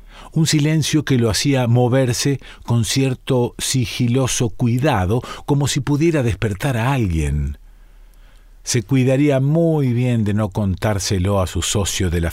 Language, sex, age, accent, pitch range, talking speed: Spanish, male, 50-69, Argentinian, 100-130 Hz, 135 wpm